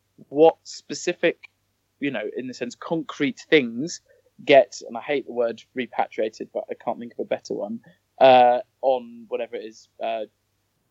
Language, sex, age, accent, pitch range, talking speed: English, male, 20-39, British, 115-140 Hz, 165 wpm